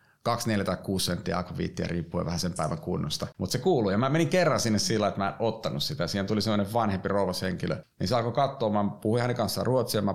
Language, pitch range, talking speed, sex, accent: Finnish, 90-110 Hz, 220 wpm, male, native